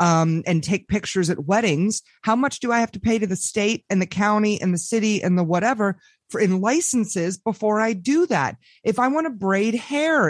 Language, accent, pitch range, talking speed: English, American, 185-255 Hz, 220 wpm